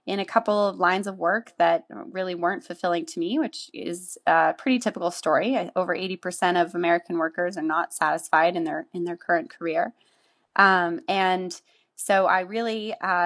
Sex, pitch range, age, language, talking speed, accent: female, 170-195 Hz, 20-39, English, 175 wpm, American